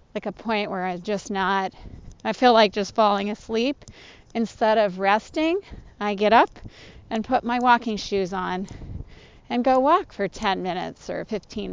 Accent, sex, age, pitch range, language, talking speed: American, female, 40-59, 190-230 Hz, English, 165 wpm